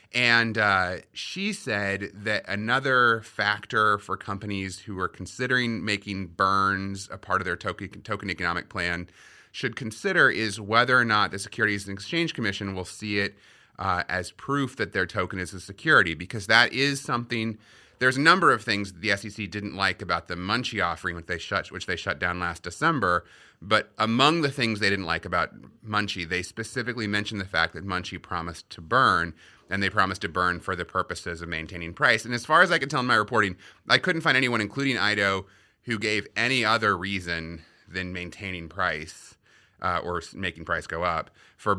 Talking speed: 190 wpm